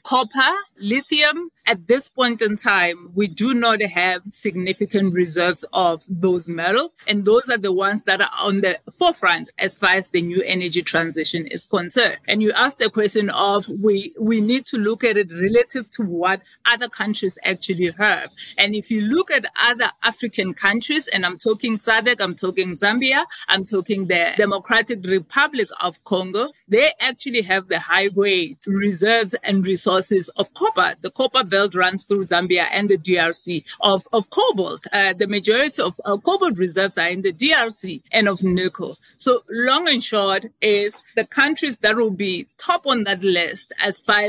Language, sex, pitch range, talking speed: English, female, 190-230 Hz, 175 wpm